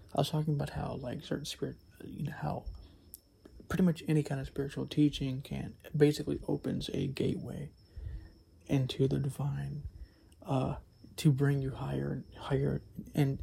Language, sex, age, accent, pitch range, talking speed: English, male, 30-49, American, 100-145 Hz, 150 wpm